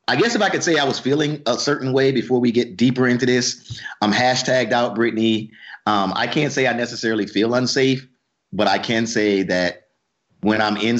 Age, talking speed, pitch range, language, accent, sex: 30-49, 200 wpm, 110-135 Hz, English, American, male